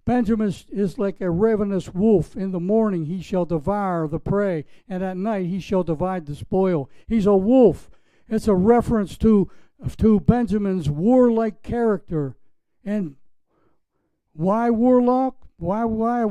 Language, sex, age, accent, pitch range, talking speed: English, male, 60-79, American, 170-225 Hz, 140 wpm